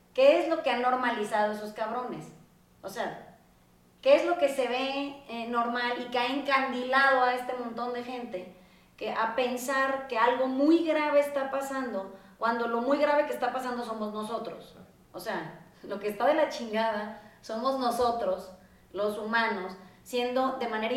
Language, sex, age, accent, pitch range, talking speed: Spanish, female, 30-49, Mexican, 215-265 Hz, 170 wpm